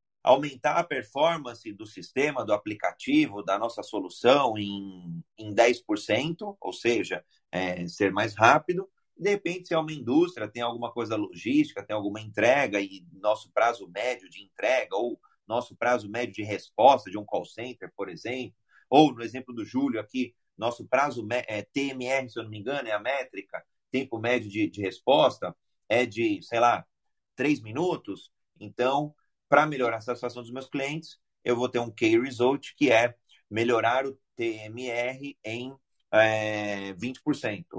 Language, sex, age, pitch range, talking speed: Portuguese, male, 30-49, 105-145 Hz, 155 wpm